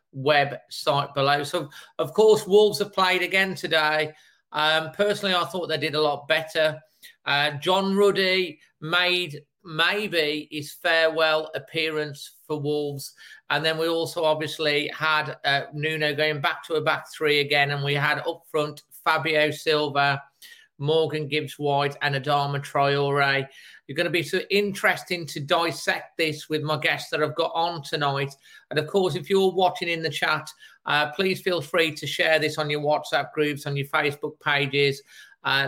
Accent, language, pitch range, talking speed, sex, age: British, English, 145-170 Hz, 165 wpm, male, 40-59